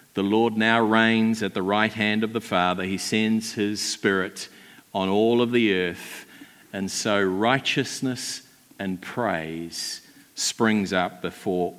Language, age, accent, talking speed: English, 50-69, Australian, 145 wpm